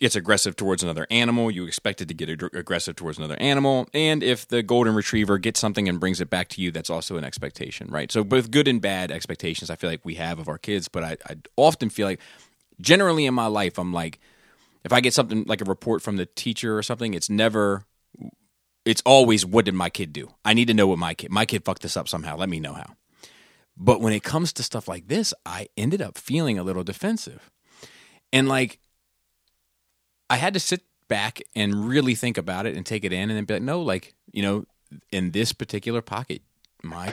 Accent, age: American, 30-49